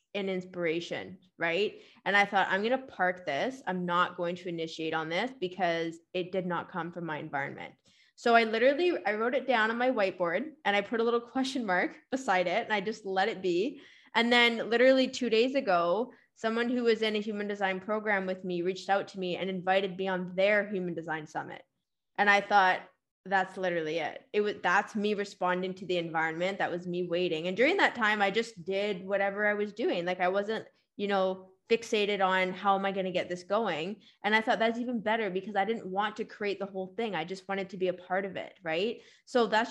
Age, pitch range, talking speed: 20-39, 185-220 Hz, 225 wpm